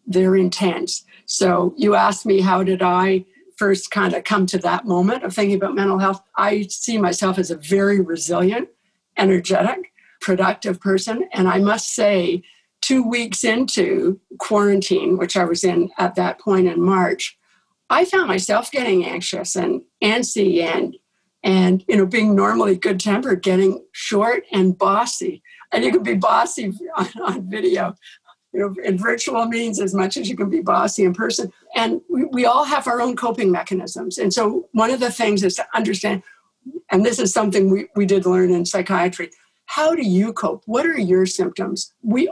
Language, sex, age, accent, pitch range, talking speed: English, female, 60-79, American, 185-220 Hz, 180 wpm